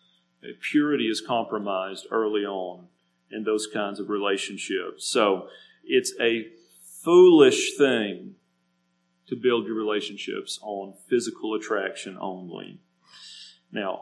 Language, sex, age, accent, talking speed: English, male, 40-59, American, 105 wpm